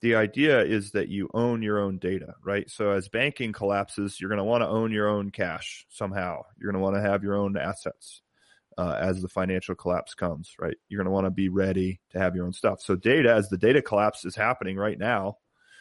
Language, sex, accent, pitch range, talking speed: English, male, American, 95-110 Hz, 235 wpm